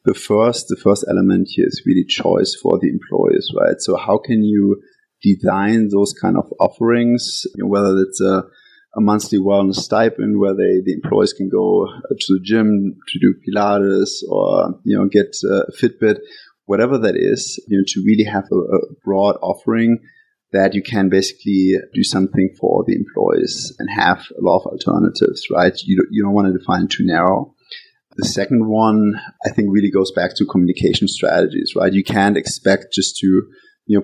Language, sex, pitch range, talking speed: English, male, 95-110 Hz, 185 wpm